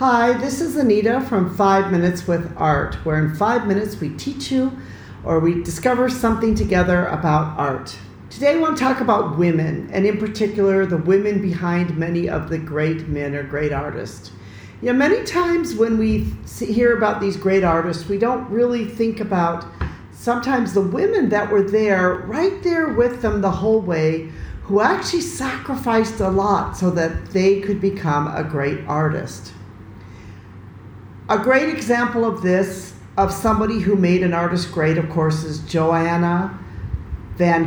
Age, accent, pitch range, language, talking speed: 50-69, American, 165-220 Hz, English, 160 wpm